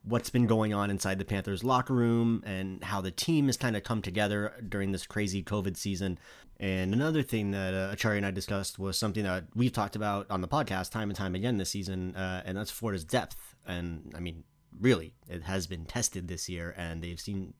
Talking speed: 220 wpm